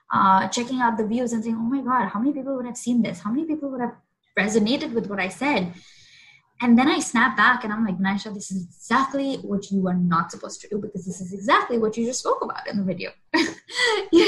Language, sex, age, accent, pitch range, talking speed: English, female, 20-39, Indian, 195-260 Hz, 250 wpm